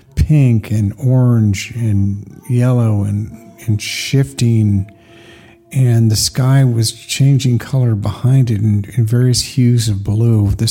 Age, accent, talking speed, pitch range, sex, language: 50-69, American, 130 wpm, 110-130 Hz, male, English